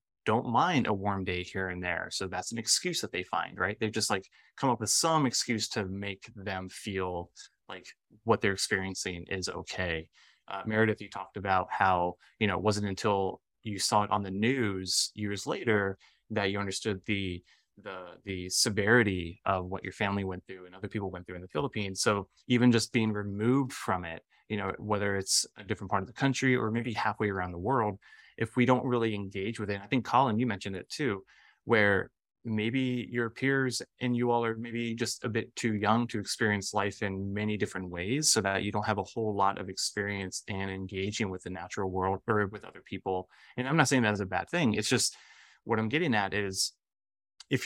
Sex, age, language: male, 20-39, English